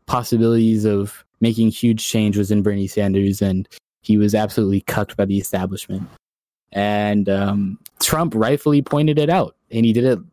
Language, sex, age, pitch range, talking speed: English, male, 10-29, 105-130 Hz, 165 wpm